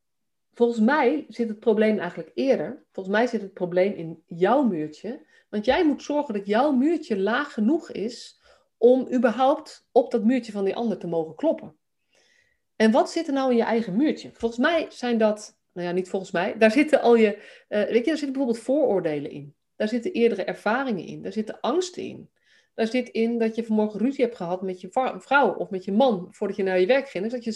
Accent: Dutch